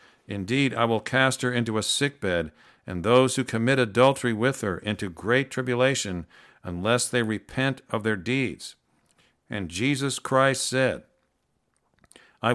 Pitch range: 105-130 Hz